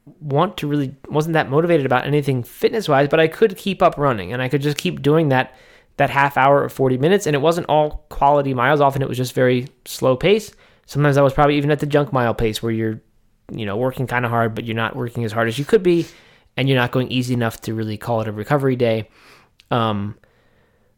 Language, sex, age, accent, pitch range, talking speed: English, male, 20-39, American, 120-150 Hz, 240 wpm